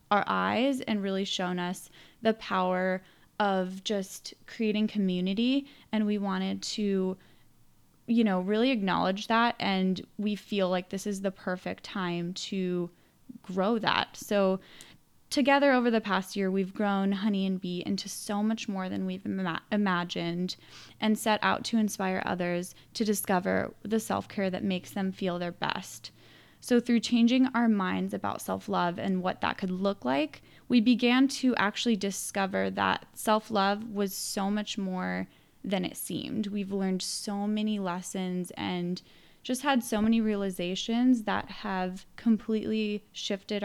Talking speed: 150 wpm